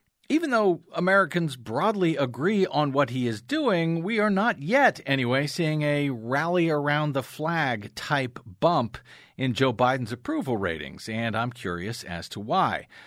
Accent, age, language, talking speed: American, 40-59, English, 155 wpm